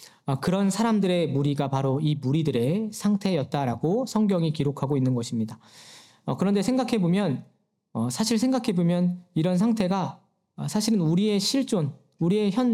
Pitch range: 150-205 Hz